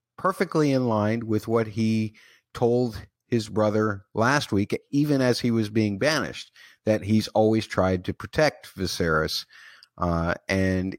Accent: American